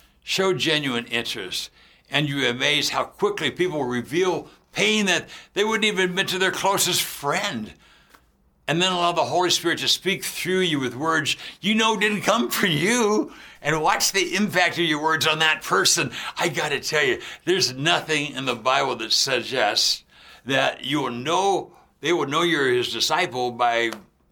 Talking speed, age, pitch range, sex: 180 wpm, 60-79, 140-190 Hz, male